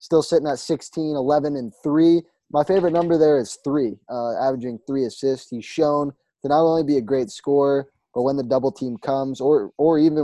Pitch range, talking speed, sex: 125-150 Hz, 205 wpm, male